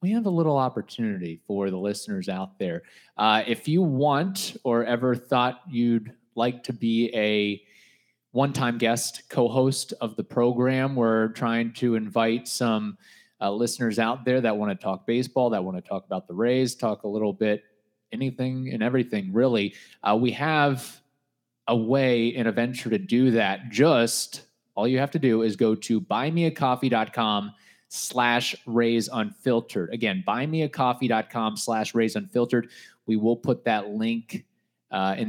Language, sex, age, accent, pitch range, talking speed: English, male, 30-49, American, 110-135 Hz, 165 wpm